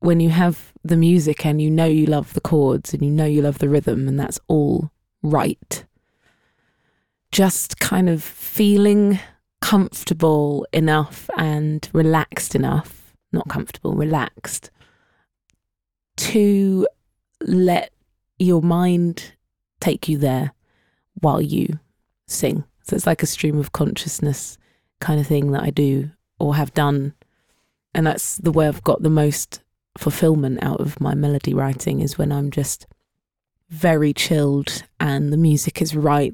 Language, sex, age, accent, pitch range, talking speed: English, female, 20-39, British, 145-165 Hz, 140 wpm